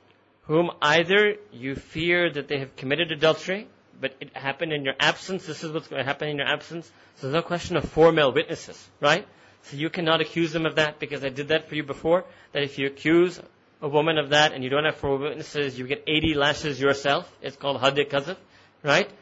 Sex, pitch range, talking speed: male, 135-160 Hz, 220 wpm